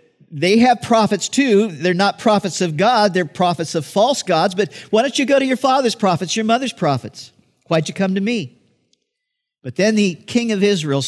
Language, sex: English, male